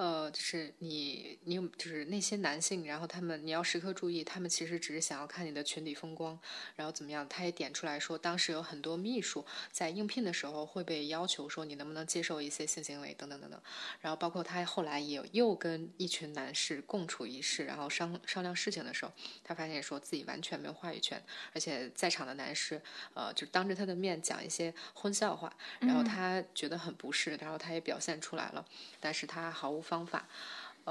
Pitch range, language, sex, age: 150-180 Hz, Chinese, female, 20-39